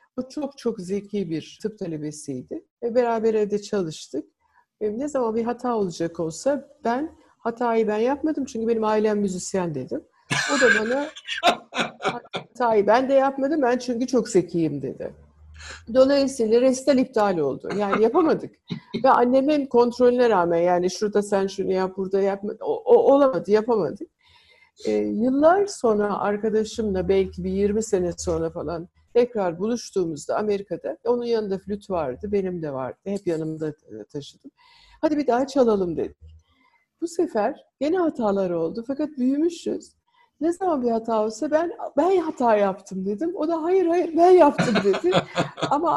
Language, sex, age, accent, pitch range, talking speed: Turkish, female, 60-79, native, 195-275 Hz, 150 wpm